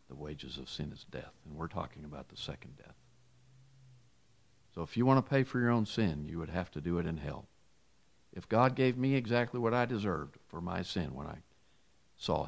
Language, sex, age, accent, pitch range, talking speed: English, male, 50-69, American, 70-100 Hz, 215 wpm